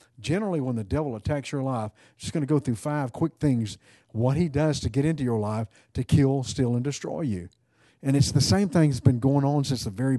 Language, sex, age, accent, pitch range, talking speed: English, male, 50-69, American, 120-150 Hz, 240 wpm